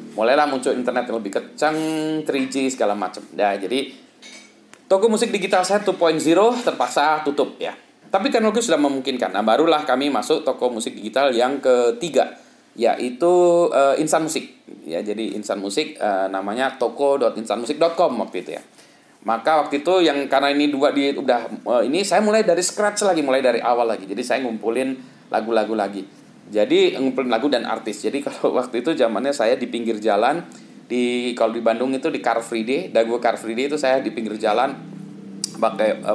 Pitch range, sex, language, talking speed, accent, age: 120-170 Hz, male, Indonesian, 170 wpm, native, 20-39